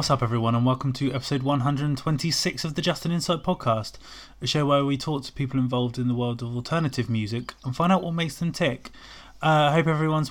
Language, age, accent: English, 20-39, British